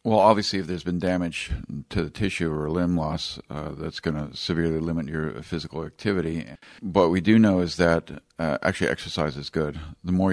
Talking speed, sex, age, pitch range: 200 wpm, male, 50-69, 80-90 Hz